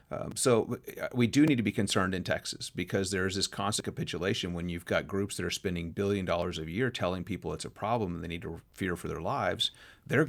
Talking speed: 240 wpm